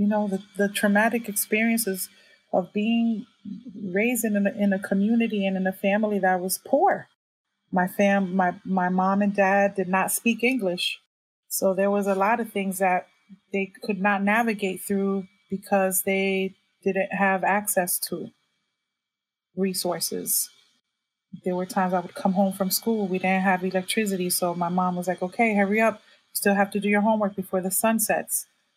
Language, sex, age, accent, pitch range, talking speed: English, female, 30-49, American, 185-215 Hz, 175 wpm